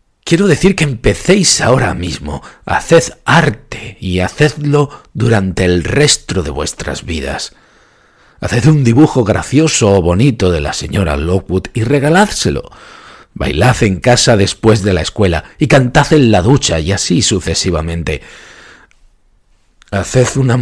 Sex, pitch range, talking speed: male, 95-145 Hz, 130 wpm